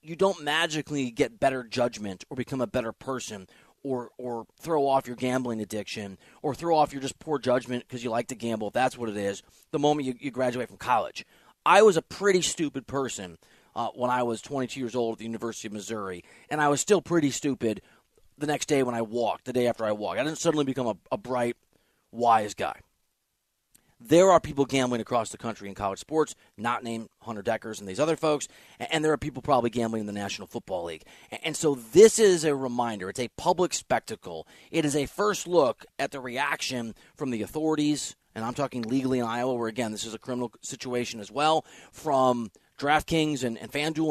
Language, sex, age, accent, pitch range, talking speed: English, male, 30-49, American, 115-150 Hz, 210 wpm